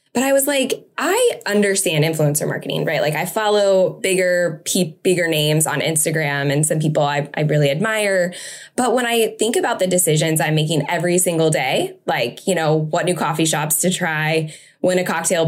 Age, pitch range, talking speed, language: 10-29, 155-195 Hz, 185 wpm, English